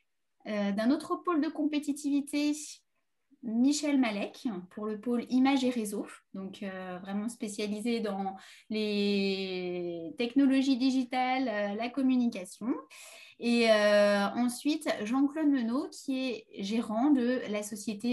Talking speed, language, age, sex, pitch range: 120 wpm, French, 20-39, female, 210-270 Hz